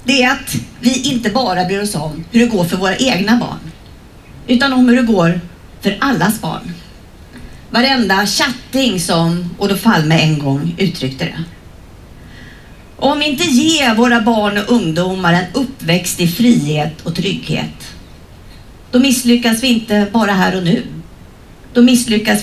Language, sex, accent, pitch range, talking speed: English, female, Swedish, 170-240 Hz, 160 wpm